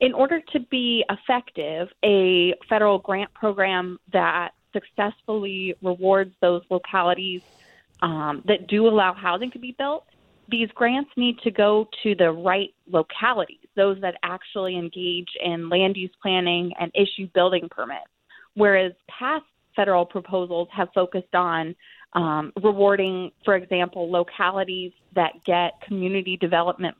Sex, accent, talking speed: female, American, 130 wpm